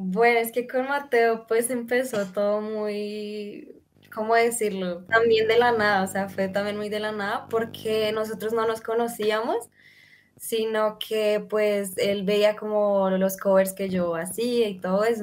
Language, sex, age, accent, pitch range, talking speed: Spanish, female, 10-29, Colombian, 190-225 Hz, 165 wpm